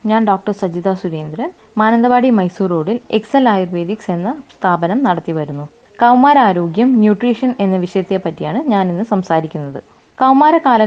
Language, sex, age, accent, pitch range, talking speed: Malayalam, female, 20-39, native, 180-250 Hz, 120 wpm